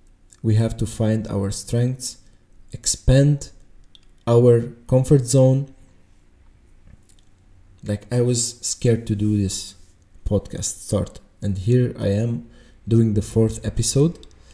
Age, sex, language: 20-39, male, English